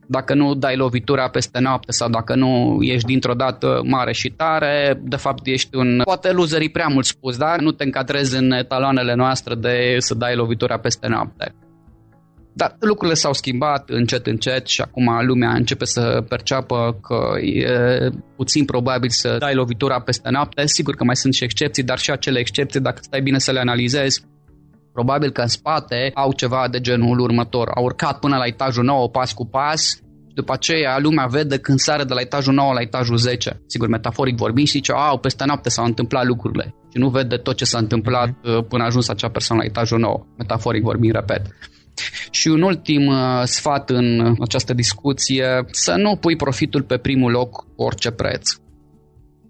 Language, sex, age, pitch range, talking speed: Romanian, male, 20-39, 120-135 Hz, 185 wpm